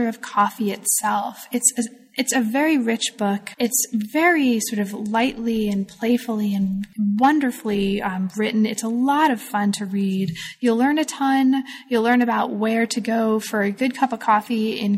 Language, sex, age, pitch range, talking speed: English, female, 10-29, 210-245 Hz, 180 wpm